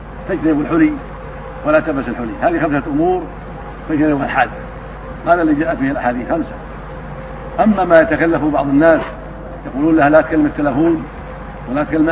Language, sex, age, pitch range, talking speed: Arabic, male, 60-79, 145-220 Hz, 140 wpm